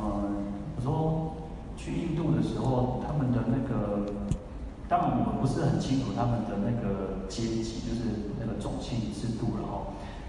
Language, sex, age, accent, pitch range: Chinese, male, 40-59, native, 100-125 Hz